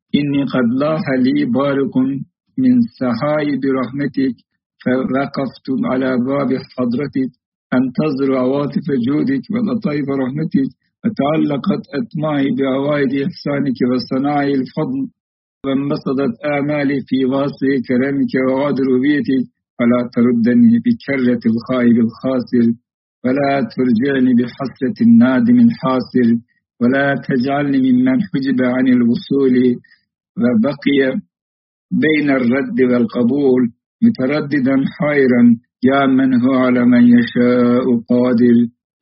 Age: 60-79